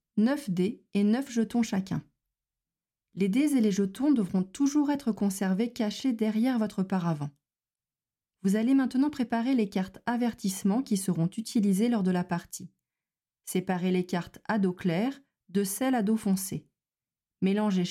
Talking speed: 150 wpm